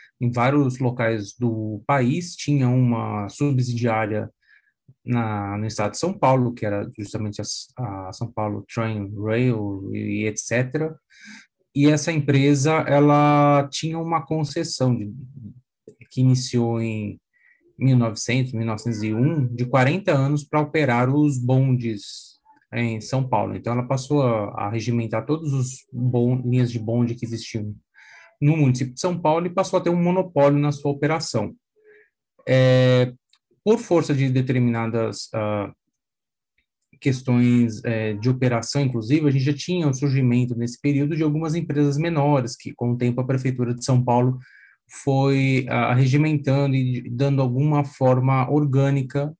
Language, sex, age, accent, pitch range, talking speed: Portuguese, male, 20-39, Brazilian, 120-145 Hz, 140 wpm